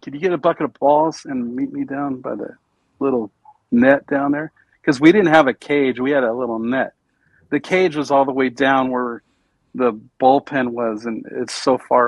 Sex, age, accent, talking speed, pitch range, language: male, 50-69, American, 215 wpm, 120-150 Hz, English